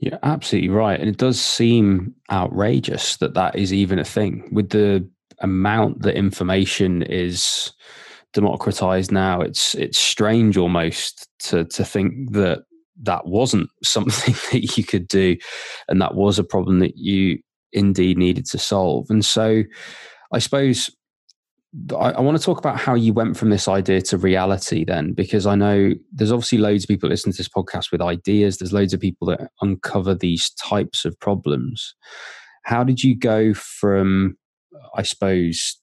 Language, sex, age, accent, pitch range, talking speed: English, male, 20-39, British, 90-105 Hz, 160 wpm